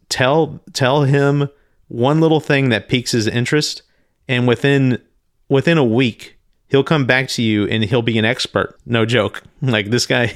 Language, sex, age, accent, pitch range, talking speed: English, male, 40-59, American, 105-125 Hz, 175 wpm